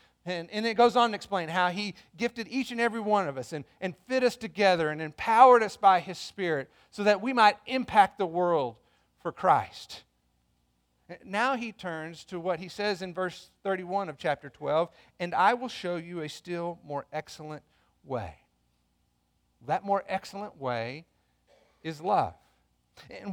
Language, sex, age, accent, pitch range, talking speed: English, male, 40-59, American, 140-215 Hz, 170 wpm